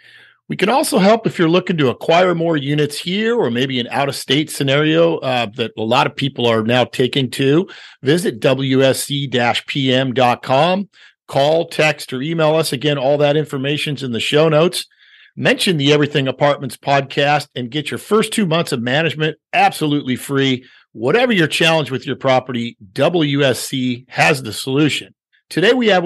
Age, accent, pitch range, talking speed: 50-69, American, 125-155 Hz, 160 wpm